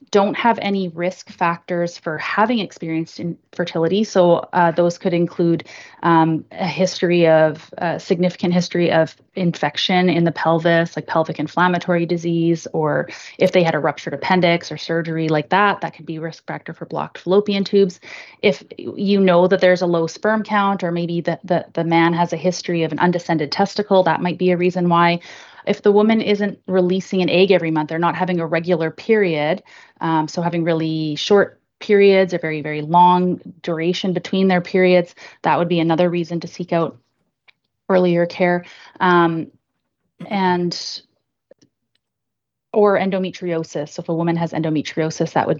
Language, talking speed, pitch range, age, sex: English, 170 wpm, 165-190 Hz, 30-49, female